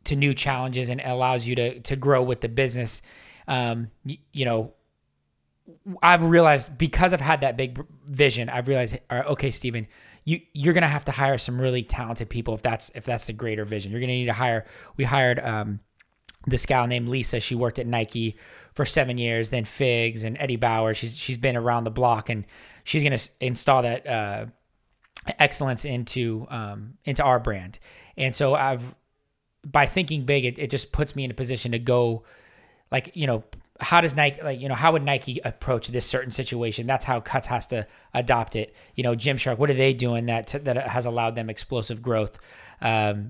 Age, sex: 20-39, male